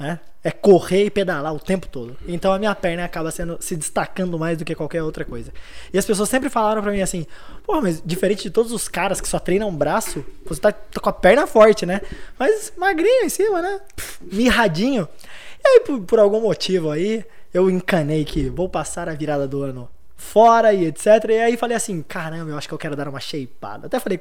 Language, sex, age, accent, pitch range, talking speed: Portuguese, male, 20-39, Brazilian, 160-220 Hz, 220 wpm